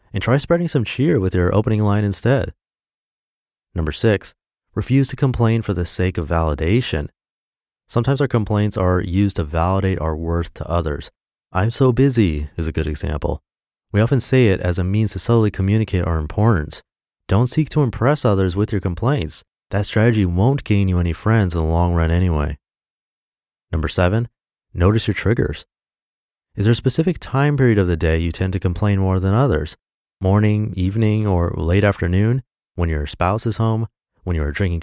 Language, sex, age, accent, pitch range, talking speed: English, male, 30-49, American, 85-115 Hz, 180 wpm